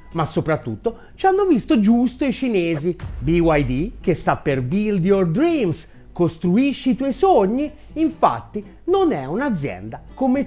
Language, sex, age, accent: Italian, male, 30-49, native